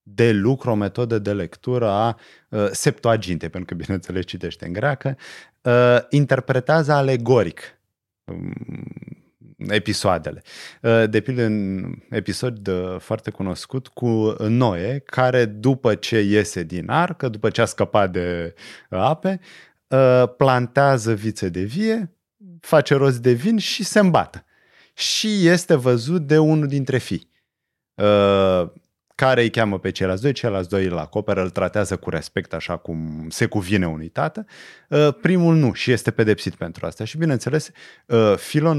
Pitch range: 100-150 Hz